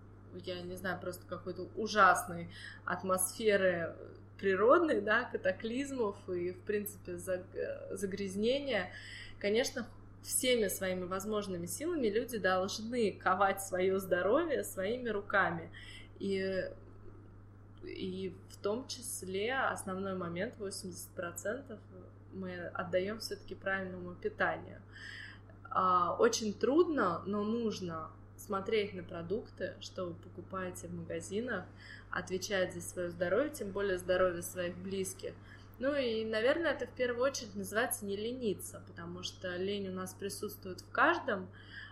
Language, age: Russian, 20-39